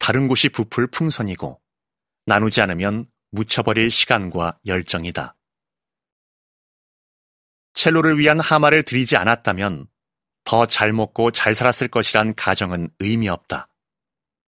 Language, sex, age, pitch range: Korean, male, 30-49, 105-140 Hz